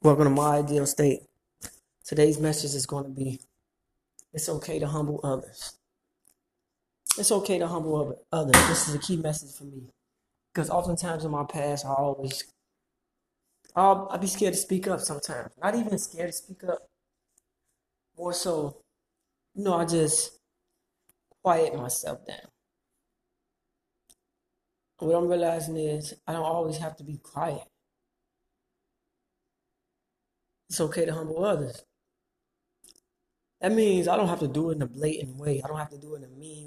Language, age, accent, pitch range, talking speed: English, 20-39, American, 150-230 Hz, 155 wpm